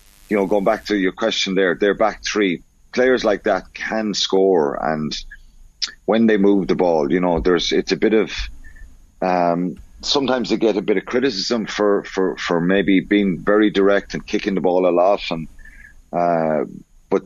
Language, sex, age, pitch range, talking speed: English, male, 30-49, 85-105 Hz, 190 wpm